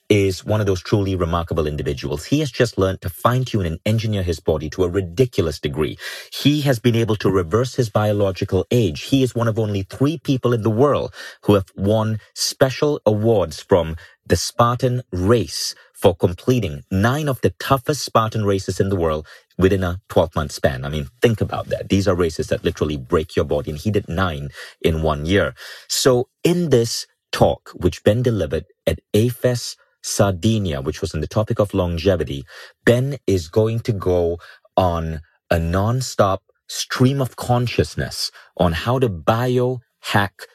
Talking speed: 170 wpm